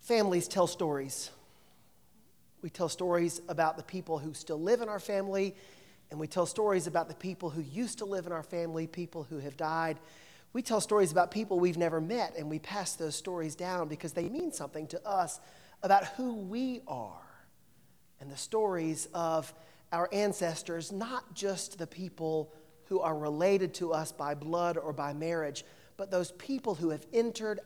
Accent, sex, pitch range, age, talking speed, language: American, male, 160-200 Hz, 40-59, 180 wpm, English